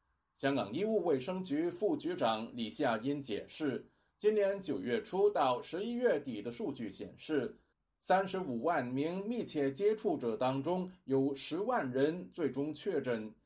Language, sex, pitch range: Chinese, male, 130-185 Hz